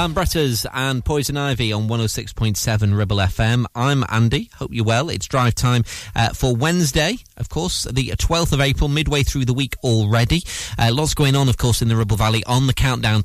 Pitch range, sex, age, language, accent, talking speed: 100-125 Hz, male, 30-49, English, British, 195 wpm